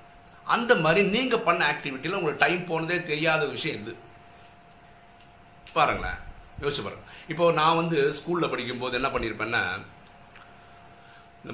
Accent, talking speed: native, 110 wpm